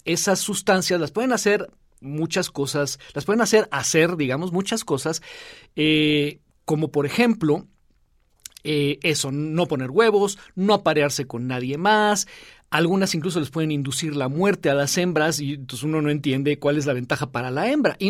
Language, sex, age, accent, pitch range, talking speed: Spanish, male, 50-69, Mexican, 145-190 Hz, 170 wpm